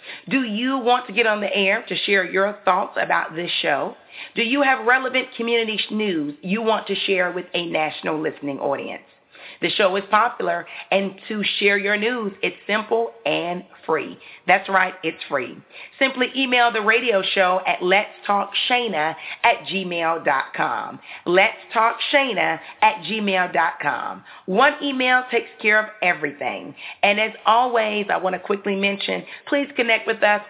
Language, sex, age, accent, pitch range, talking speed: English, female, 40-59, American, 185-230 Hz, 160 wpm